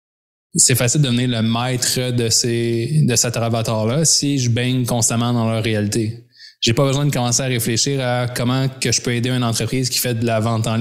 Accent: Canadian